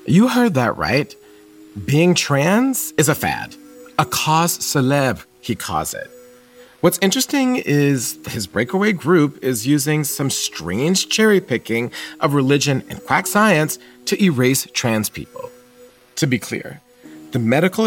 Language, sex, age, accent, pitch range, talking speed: English, male, 40-59, American, 115-170 Hz, 135 wpm